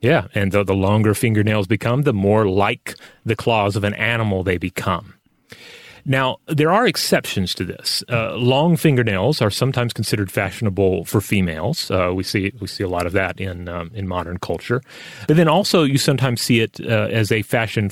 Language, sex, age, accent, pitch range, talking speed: English, male, 30-49, American, 95-120 Hz, 190 wpm